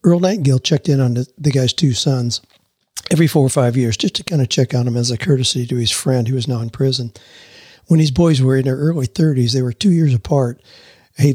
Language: English